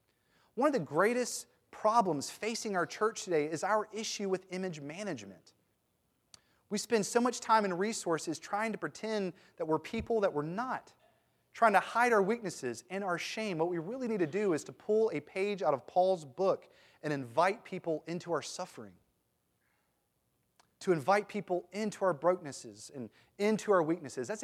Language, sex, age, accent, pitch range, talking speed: English, male, 30-49, American, 160-210 Hz, 175 wpm